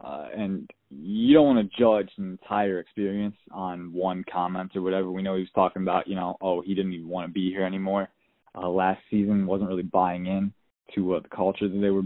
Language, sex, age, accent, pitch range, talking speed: English, male, 20-39, American, 95-105 Hz, 230 wpm